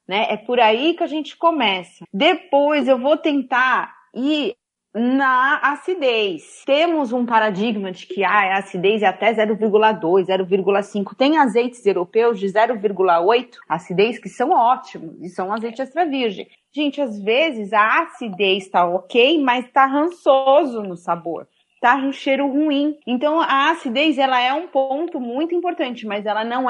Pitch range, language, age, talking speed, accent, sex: 205-275 Hz, Portuguese, 30-49, 155 wpm, Brazilian, female